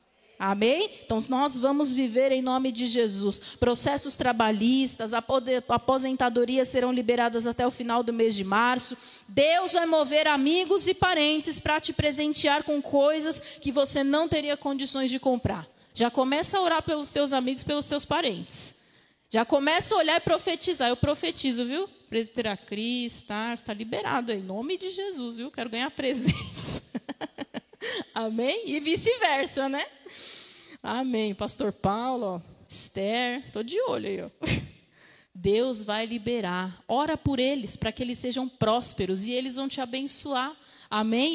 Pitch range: 230-295 Hz